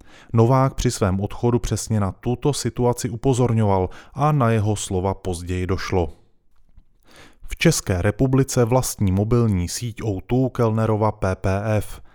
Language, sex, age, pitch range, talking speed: Czech, male, 20-39, 100-120 Hz, 120 wpm